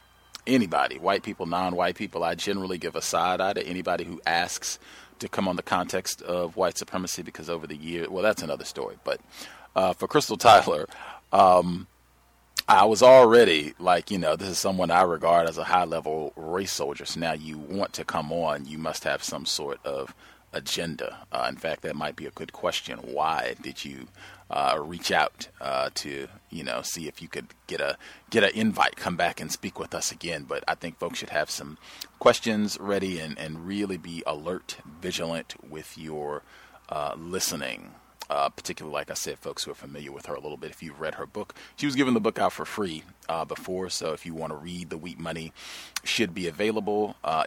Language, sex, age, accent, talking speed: English, male, 30-49, American, 205 wpm